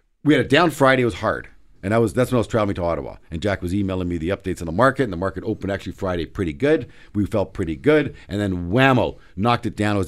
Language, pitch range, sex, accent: English, 100-140 Hz, male, American